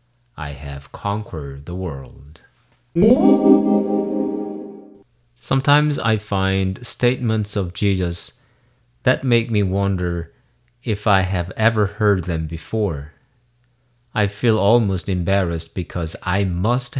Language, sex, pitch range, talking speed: English, male, 90-120 Hz, 100 wpm